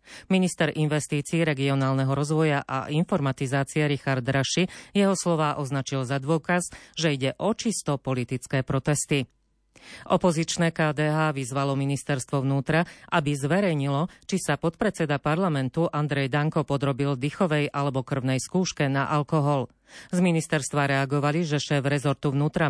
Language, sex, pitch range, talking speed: Slovak, female, 135-160 Hz, 120 wpm